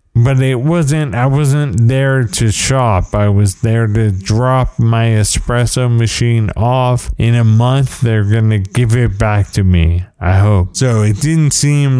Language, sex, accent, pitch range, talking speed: English, male, American, 110-130 Hz, 170 wpm